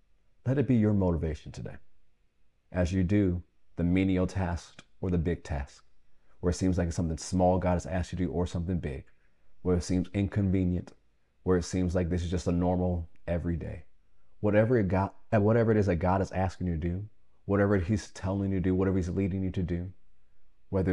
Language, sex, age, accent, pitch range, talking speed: English, male, 30-49, American, 80-95 Hz, 205 wpm